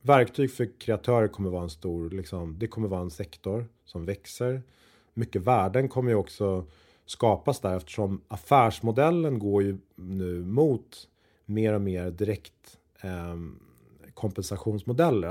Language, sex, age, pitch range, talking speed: Swedish, male, 30-49, 95-120 Hz, 135 wpm